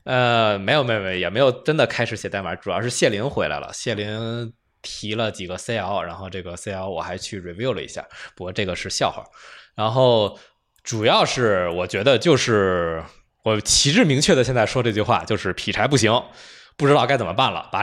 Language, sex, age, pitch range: Chinese, male, 20-39, 95-120 Hz